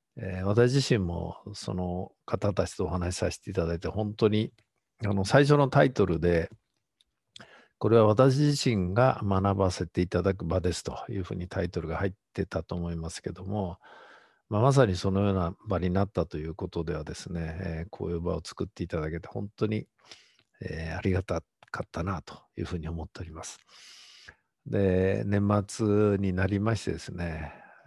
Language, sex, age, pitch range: Japanese, male, 50-69, 90-115 Hz